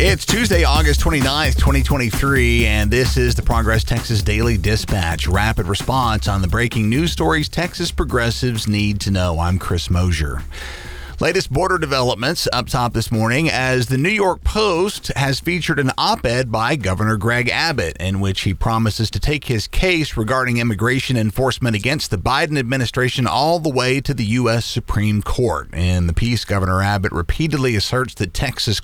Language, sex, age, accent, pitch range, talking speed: English, male, 40-59, American, 100-135 Hz, 165 wpm